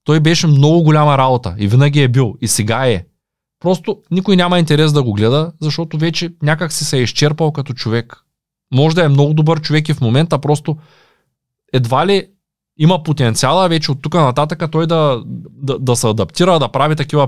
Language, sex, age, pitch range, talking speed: Bulgarian, male, 20-39, 120-160 Hz, 190 wpm